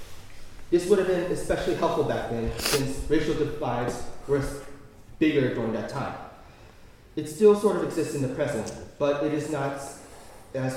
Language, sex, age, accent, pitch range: Korean, male, 30-49, American, 120-160 Hz